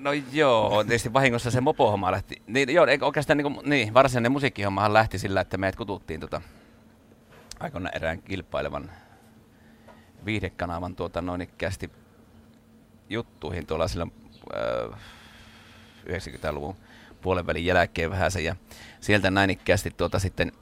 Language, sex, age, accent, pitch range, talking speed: Finnish, male, 30-49, native, 85-110 Hz, 115 wpm